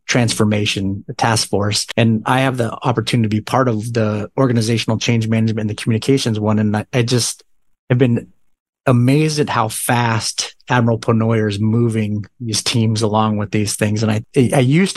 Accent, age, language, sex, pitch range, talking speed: American, 30-49, English, male, 110-130 Hz, 170 wpm